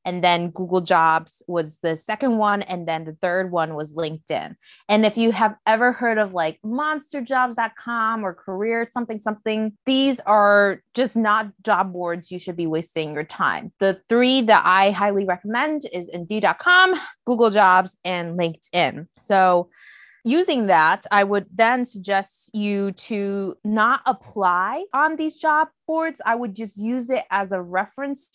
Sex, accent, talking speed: female, American, 160 wpm